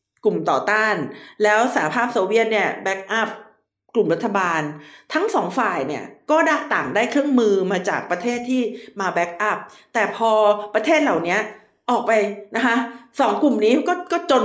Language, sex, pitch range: Thai, female, 195-265 Hz